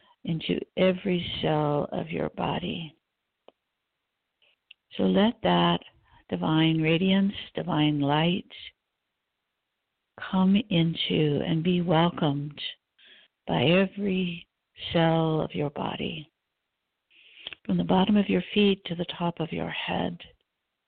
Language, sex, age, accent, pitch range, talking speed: English, female, 50-69, American, 155-185 Hz, 105 wpm